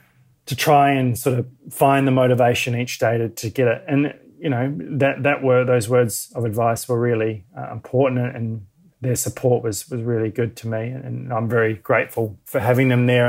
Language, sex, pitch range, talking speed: English, male, 115-135 Hz, 210 wpm